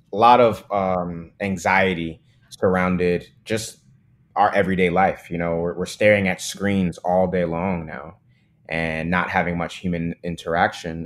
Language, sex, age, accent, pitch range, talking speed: English, male, 20-39, American, 90-110 Hz, 140 wpm